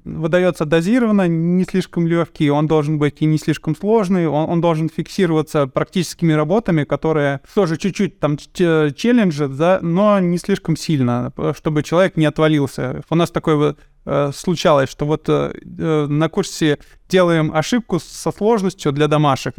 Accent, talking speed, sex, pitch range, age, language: native, 155 wpm, male, 150-185 Hz, 20-39, Russian